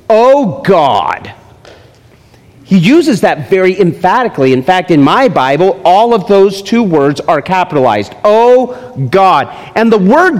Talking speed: 140 wpm